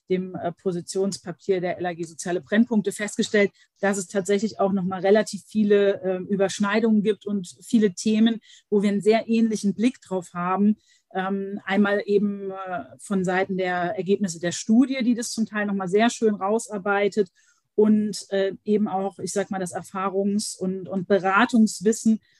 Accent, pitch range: German, 190-215 Hz